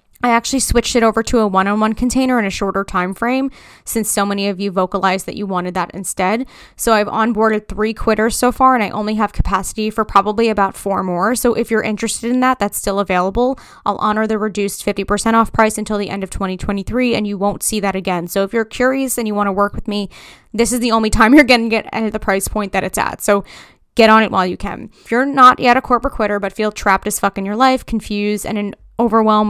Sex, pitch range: female, 200-230 Hz